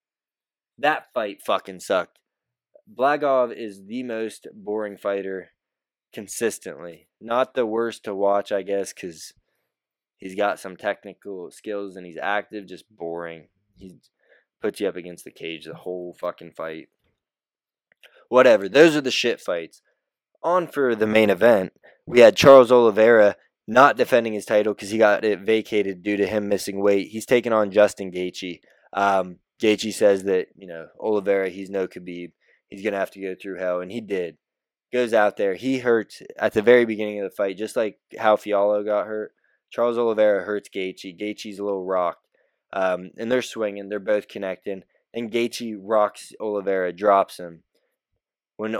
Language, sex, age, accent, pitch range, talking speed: English, male, 20-39, American, 95-110 Hz, 165 wpm